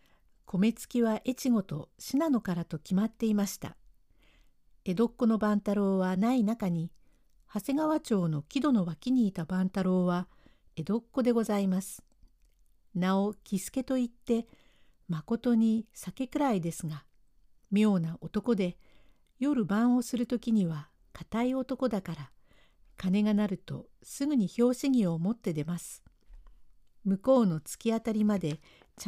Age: 60-79